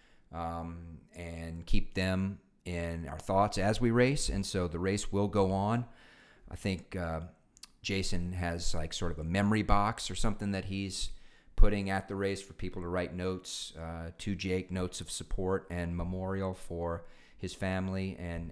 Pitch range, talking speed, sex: 85-95 Hz, 170 wpm, male